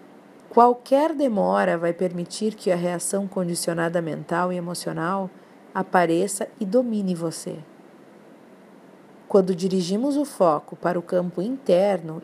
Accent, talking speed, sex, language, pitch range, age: Brazilian, 115 wpm, female, Portuguese, 175-220 Hz, 40-59